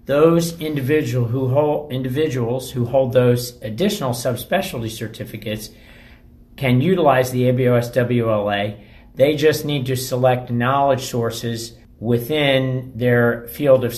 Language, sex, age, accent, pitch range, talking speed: English, male, 50-69, American, 115-130 Hz, 110 wpm